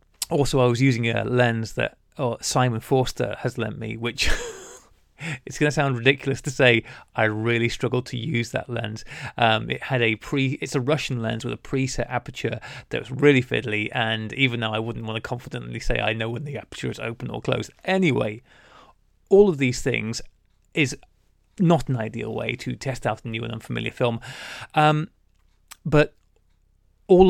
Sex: male